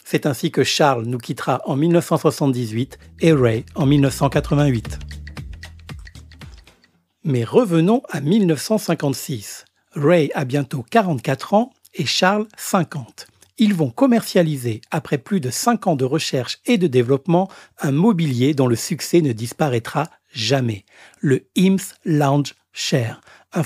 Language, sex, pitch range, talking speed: French, male, 130-175 Hz, 125 wpm